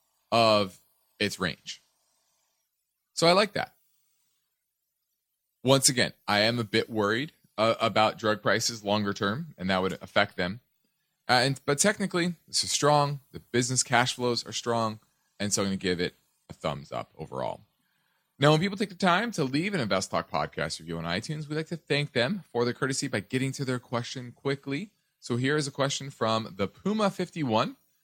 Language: English